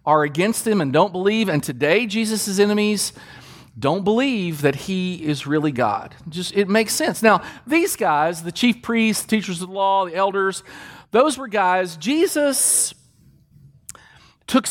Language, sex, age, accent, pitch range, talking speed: English, male, 40-59, American, 160-225 Hz, 155 wpm